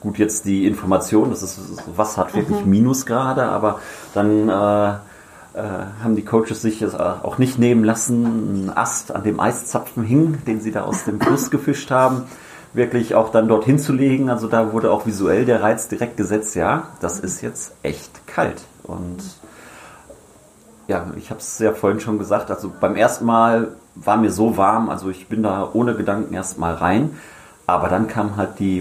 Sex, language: male, German